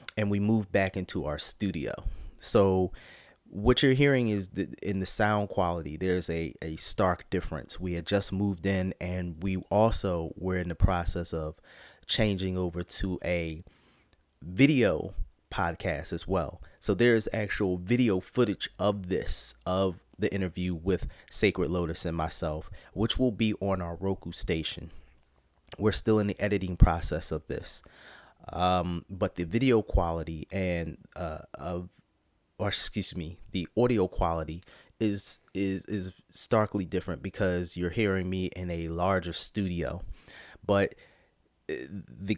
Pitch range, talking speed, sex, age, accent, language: 85-100 Hz, 145 wpm, male, 30-49, American, English